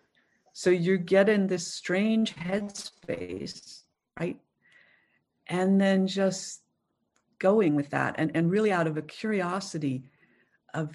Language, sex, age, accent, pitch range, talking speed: English, female, 50-69, American, 160-225 Hz, 120 wpm